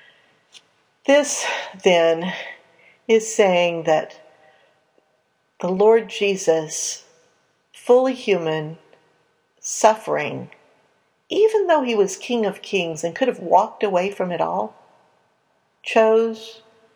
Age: 50-69